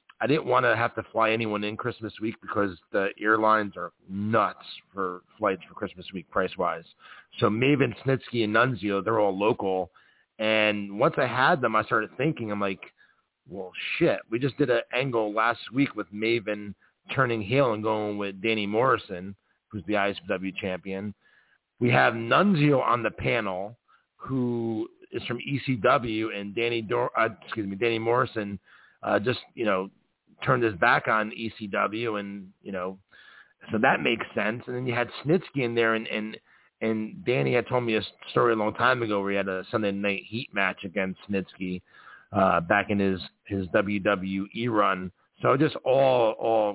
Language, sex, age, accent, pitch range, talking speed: English, male, 40-59, American, 100-115 Hz, 170 wpm